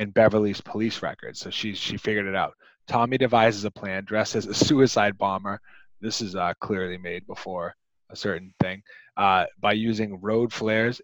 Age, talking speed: 30-49, 180 wpm